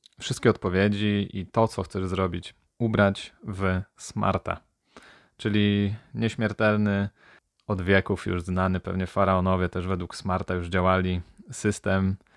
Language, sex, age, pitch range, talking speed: Polish, male, 20-39, 95-110 Hz, 115 wpm